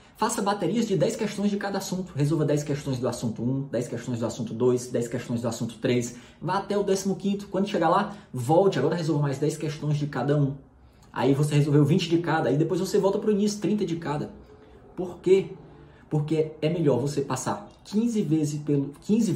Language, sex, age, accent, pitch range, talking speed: Portuguese, male, 20-39, Brazilian, 125-180 Hz, 210 wpm